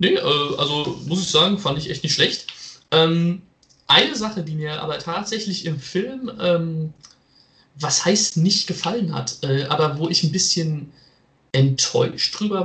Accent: German